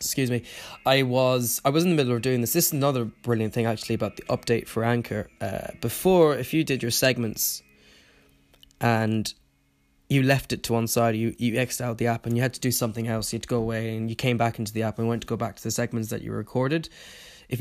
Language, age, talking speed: English, 10-29, 250 wpm